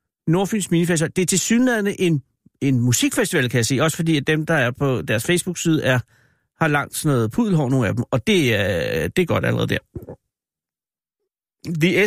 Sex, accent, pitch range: male, native, 145-185 Hz